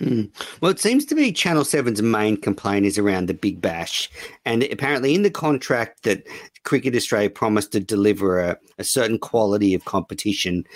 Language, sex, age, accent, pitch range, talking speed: English, male, 50-69, Australian, 100-120 Hz, 175 wpm